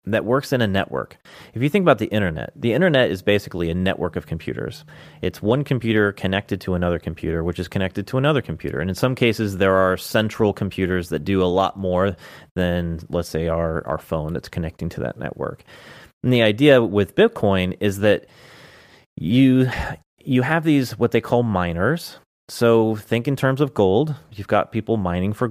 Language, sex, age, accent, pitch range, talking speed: English, male, 30-49, American, 90-115 Hz, 195 wpm